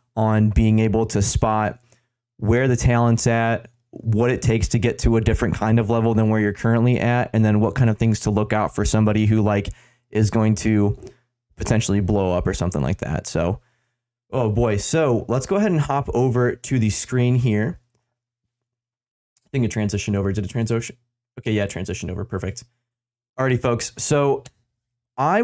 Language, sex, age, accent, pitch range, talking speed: English, male, 20-39, American, 110-125 Hz, 185 wpm